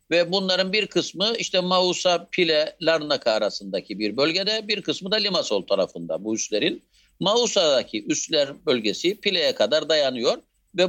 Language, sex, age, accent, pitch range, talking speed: Turkish, male, 60-79, native, 150-205 Hz, 140 wpm